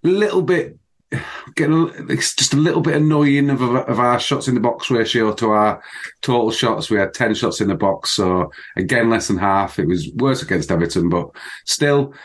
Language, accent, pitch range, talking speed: English, British, 95-135 Hz, 190 wpm